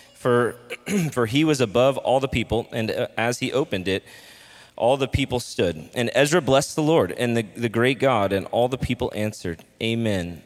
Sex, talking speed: male, 190 wpm